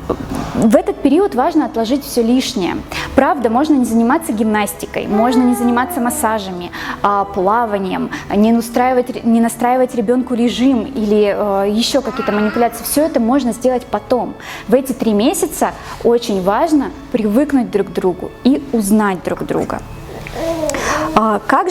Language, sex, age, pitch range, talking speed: Russian, female, 20-39, 220-280 Hz, 125 wpm